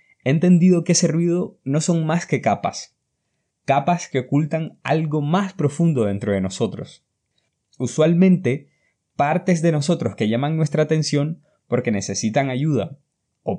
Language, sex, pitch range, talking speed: Spanish, male, 115-165 Hz, 135 wpm